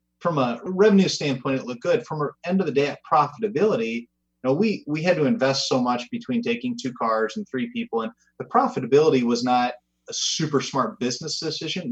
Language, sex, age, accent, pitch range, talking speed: English, male, 30-49, American, 125-185 Hz, 205 wpm